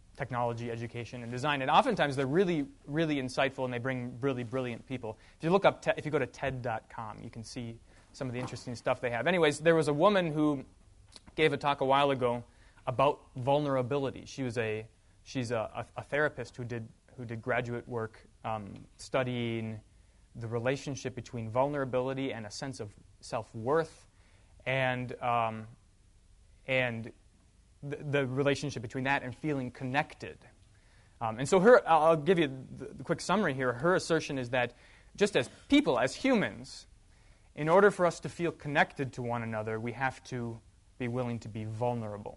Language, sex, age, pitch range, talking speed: English, male, 20-39, 115-145 Hz, 175 wpm